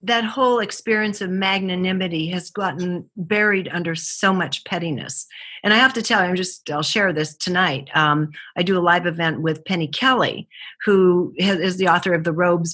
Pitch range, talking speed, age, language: 165-195 Hz, 180 wpm, 50-69, English